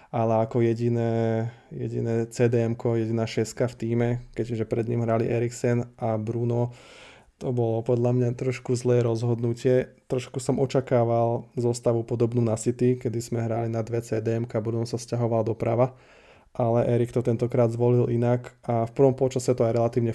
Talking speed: 155 wpm